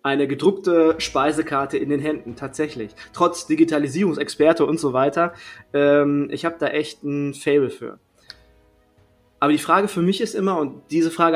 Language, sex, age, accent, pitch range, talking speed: German, male, 30-49, German, 140-185 Hz, 160 wpm